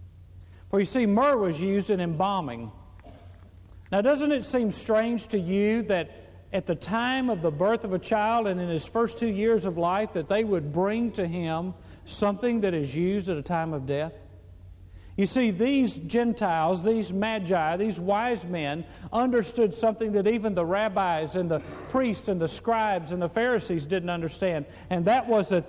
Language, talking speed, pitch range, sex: English, 180 wpm, 165-220 Hz, male